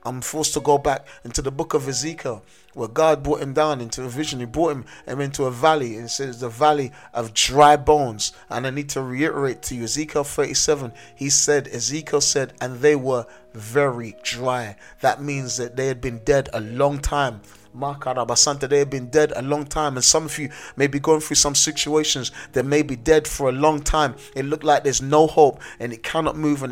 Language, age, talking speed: English, 30-49, 210 wpm